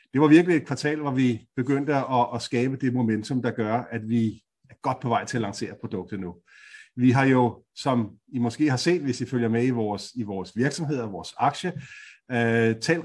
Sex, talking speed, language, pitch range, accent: male, 210 wpm, Danish, 120-150 Hz, native